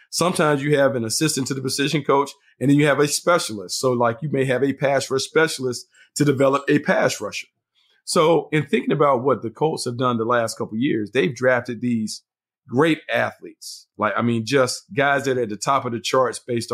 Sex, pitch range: male, 120-140 Hz